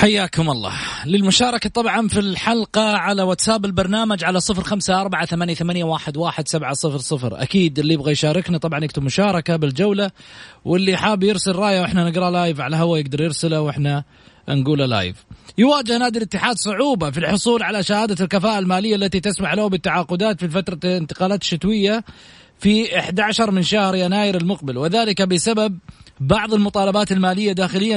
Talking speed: 135 wpm